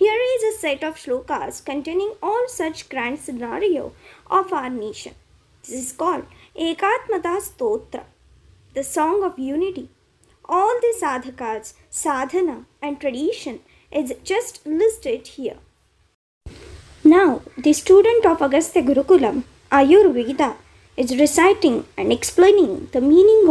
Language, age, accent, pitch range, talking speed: Hindi, 20-39, native, 215-315 Hz, 115 wpm